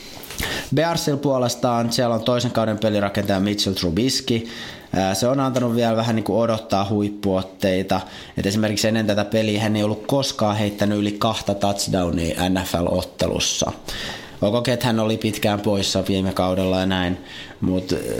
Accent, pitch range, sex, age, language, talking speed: native, 100-115 Hz, male, 30-49, Finnish, 140 wpm